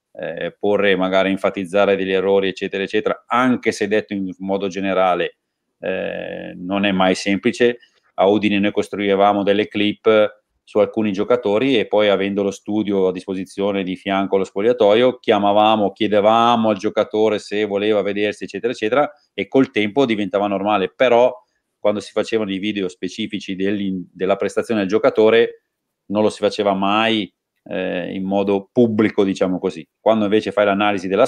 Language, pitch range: Italian, 95-110 Hz